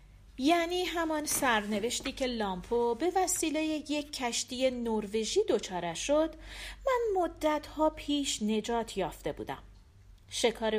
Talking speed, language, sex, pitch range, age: 105 wpm, Persian, female, 195-285 Hz, 40-59